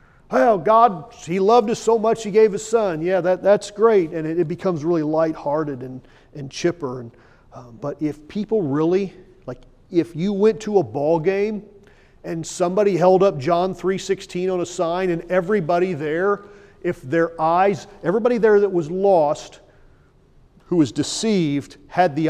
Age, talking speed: 40-59, 170 wpm